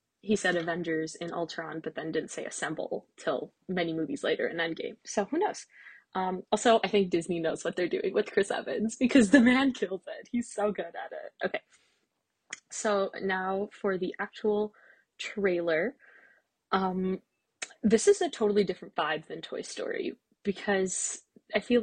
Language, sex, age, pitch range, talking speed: English, female, 20-39, 175-225 Hz, 170 wpm